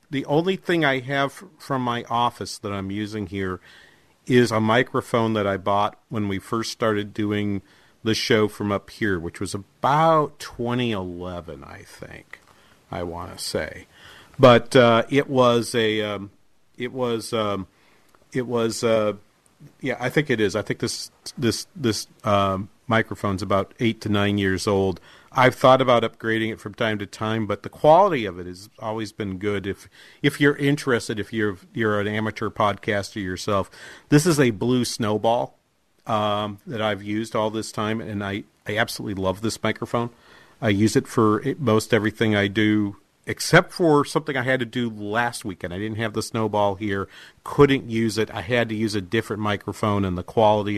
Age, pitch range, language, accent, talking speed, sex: 40-59, 100-120 Hz, English, American, 180 wpm, male